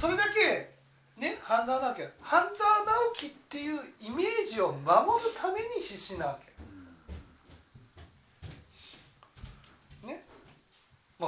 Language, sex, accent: Japanese, male, native